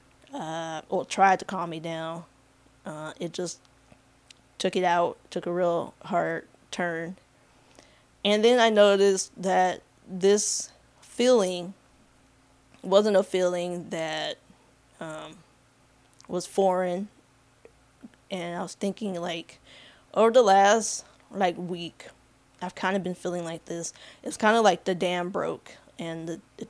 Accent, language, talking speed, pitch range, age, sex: American, English, 130 wpm, 160-190 Hz, 20-39, female